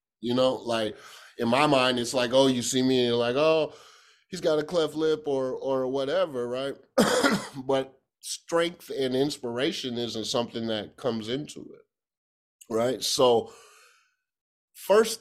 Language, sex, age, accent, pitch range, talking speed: English, male, 30-49, American, 105-135 Hz, 150 wpm